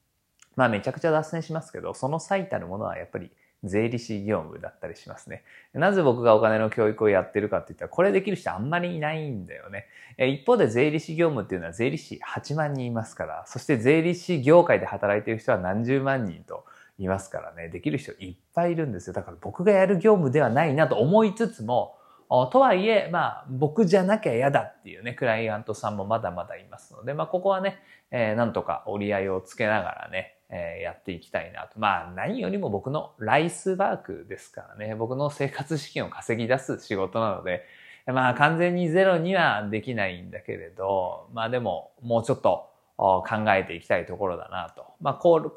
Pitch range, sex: 110-170 Hz, male